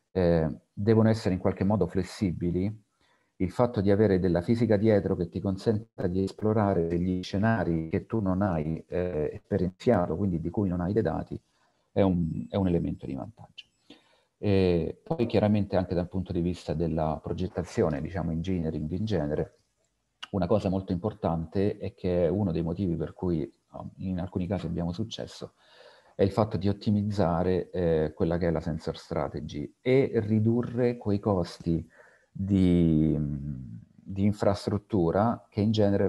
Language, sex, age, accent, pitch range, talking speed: Italian, male, 40-59, native, 85-100 Hz, 155 wpm